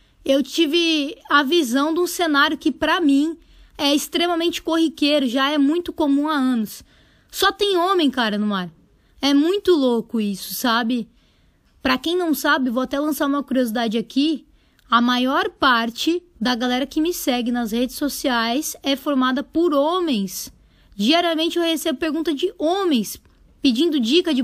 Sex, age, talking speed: female, 20-39, 155 wpm